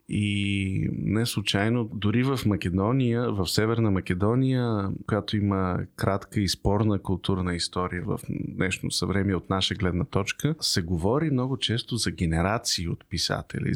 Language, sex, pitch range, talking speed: Bulgarian, male, 95-130 Hz, 135 wpm